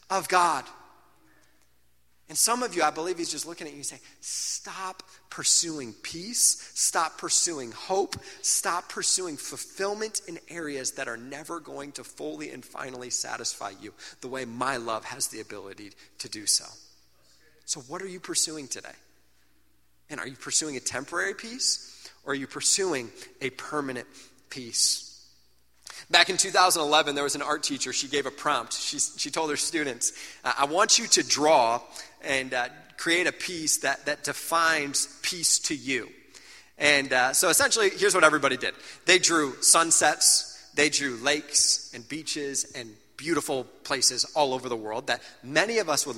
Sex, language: male, English